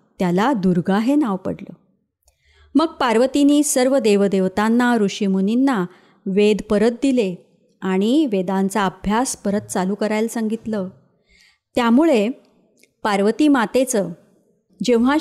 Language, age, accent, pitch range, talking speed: Marathi, 30-49, native, 195-250 Hz, 95 wpm